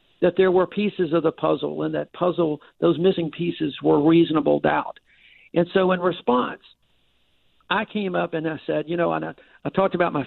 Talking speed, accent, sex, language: 200 wpm, American, male, English